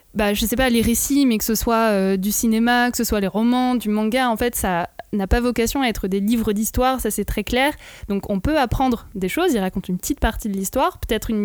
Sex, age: female, 20-39